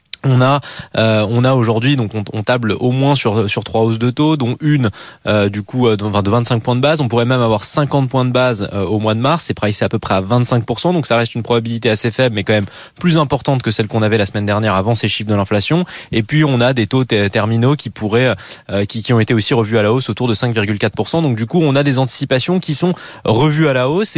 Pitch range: 110-140 Hz